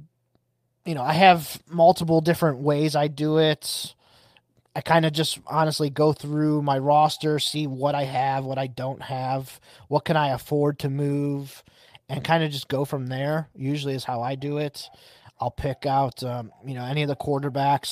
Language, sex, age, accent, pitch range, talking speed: English, male, 20-39, American, 130-155 Hz, 190 wpm